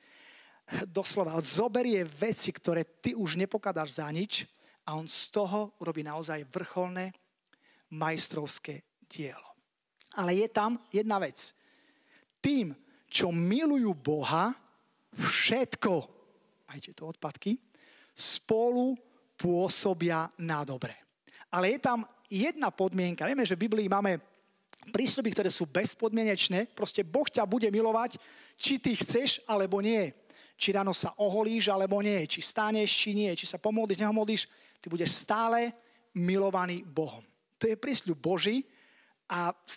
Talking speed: 130 wpm